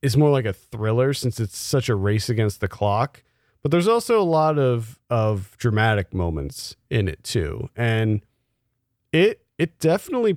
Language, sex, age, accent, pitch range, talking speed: English, male, 40-59, American, 105-130 Hz, 170 wpm